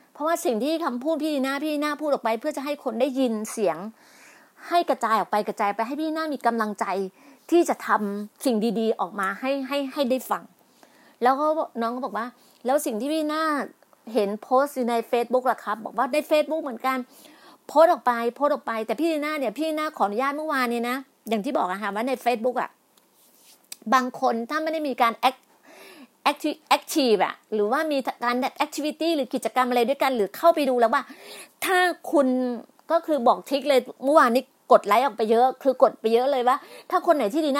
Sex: female